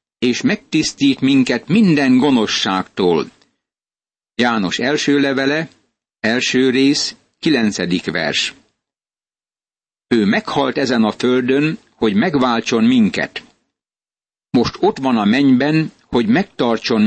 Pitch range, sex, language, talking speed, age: 120-195 Hz, male, Hungarian, 95 wpm, 60-79